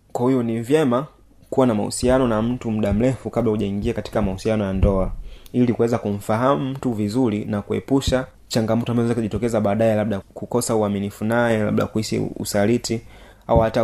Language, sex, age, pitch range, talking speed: Swahili, male, 30-49, 105-125 Hz, 160 wpm